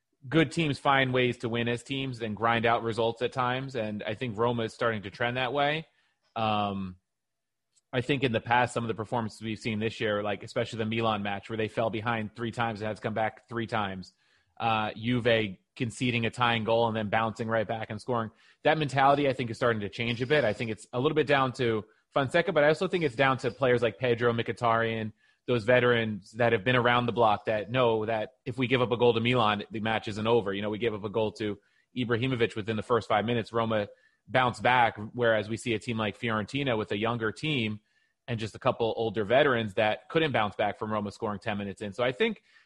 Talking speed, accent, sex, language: 240 wpm, American, male, English